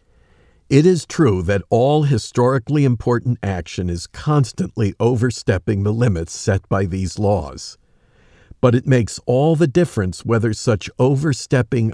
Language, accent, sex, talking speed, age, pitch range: English, American, male, 130 wpm, 50-69, 100-135 Hz